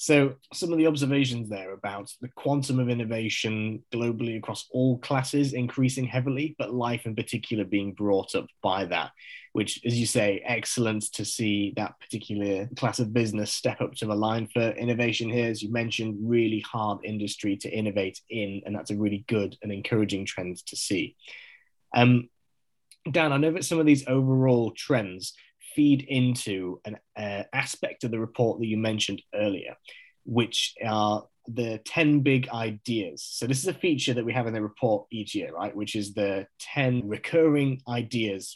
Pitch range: 105-130 Hz